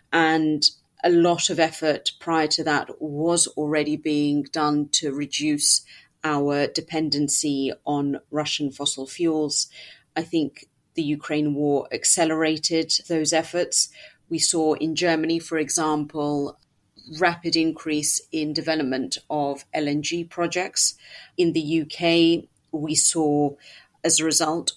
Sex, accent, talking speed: female, British, 120 wpm